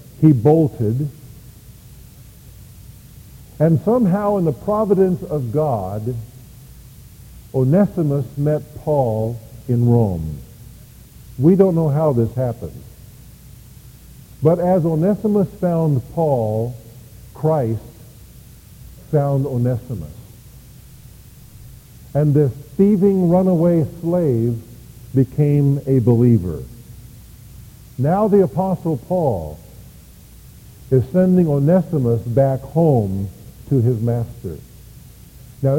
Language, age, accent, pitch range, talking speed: English, 50-69, American, 115-155 Hz, 80 wpm